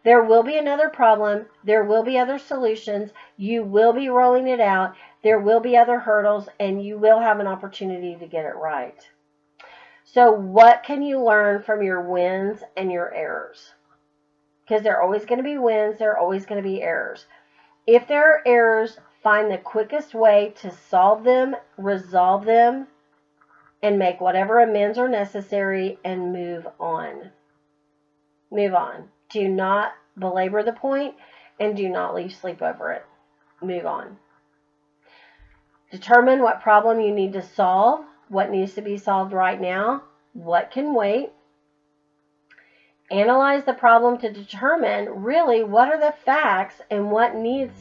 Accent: American